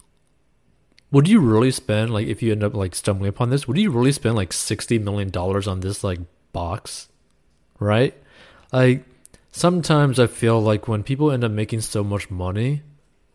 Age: 20-39